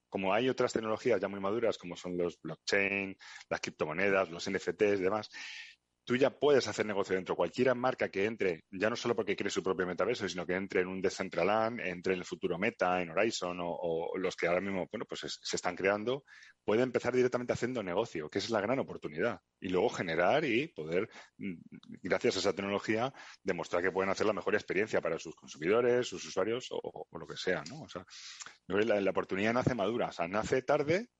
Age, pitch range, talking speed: 30-49, 90-105 Hz, 210 wpm